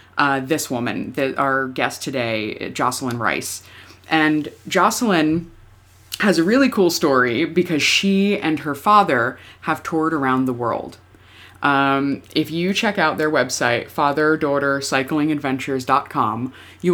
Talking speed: 125 wpm